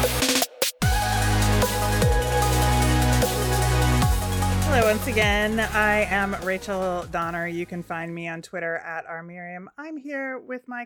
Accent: American